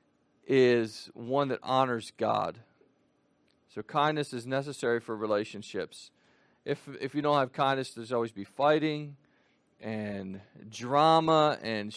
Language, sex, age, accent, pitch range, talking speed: English, male, 40-59, American, 130-185 Hz, 120 wpm